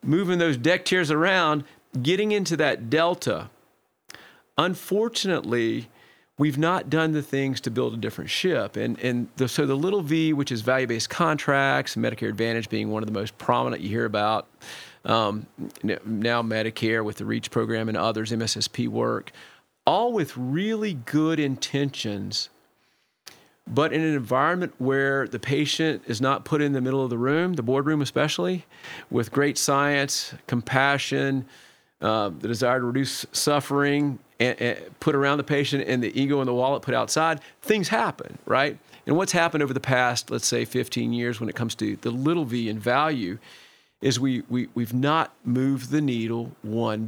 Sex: male